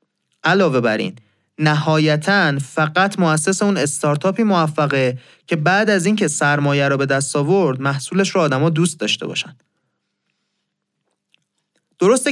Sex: male